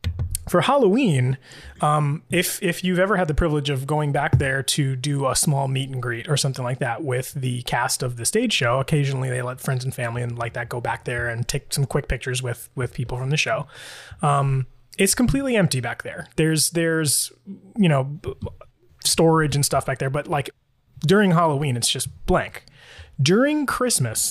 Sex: male